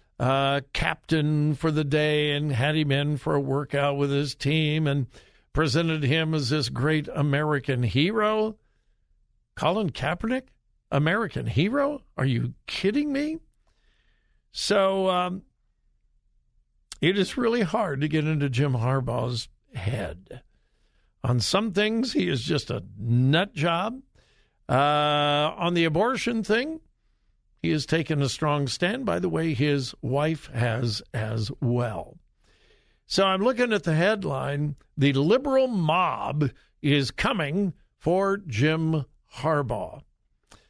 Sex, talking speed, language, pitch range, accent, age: male, 125 wpm, English, 135-180 Hz, American, 60-79